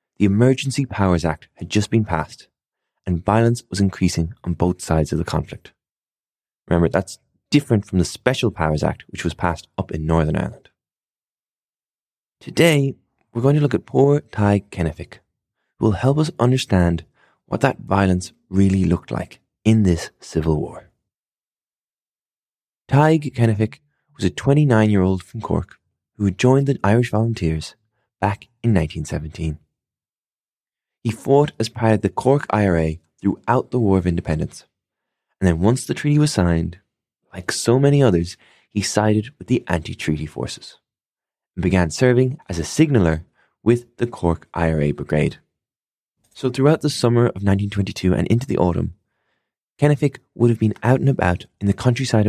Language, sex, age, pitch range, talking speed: English, male, 20-39, 85-120 Hz, 160 wpm